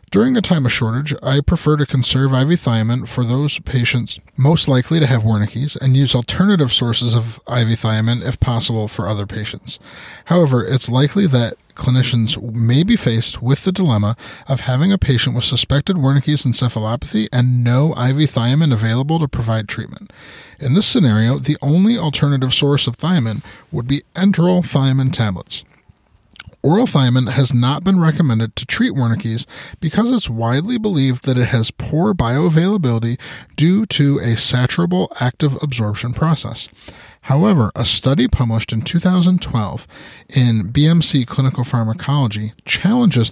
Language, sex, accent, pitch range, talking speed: English, male, American, 120-155 Hz, 150 wpm